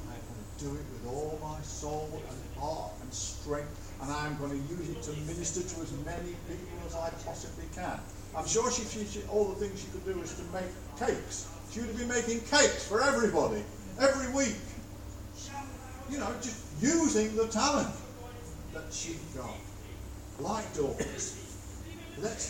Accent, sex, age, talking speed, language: British, male, 50-69, 170 wpm, English